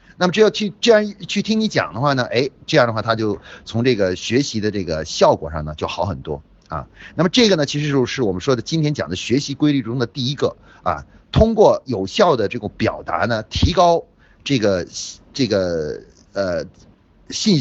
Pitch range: 100-160 Hz